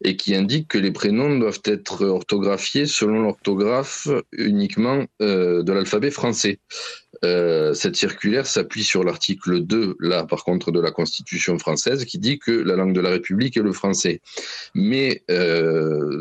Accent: French